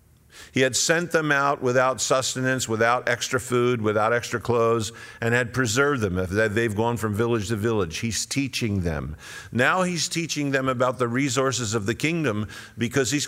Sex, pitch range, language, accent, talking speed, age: male, 105-130 Hz, English, American, 175 wpm, 50-69